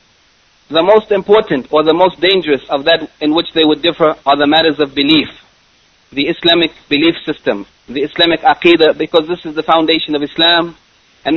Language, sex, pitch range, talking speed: English, male, 145-170 Hz, 180 wpm